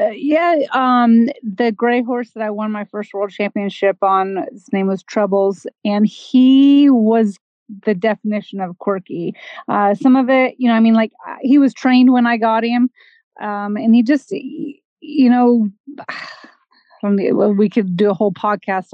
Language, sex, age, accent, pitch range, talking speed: English, female, 30-49, American, 200-245 Hz, 165 wpm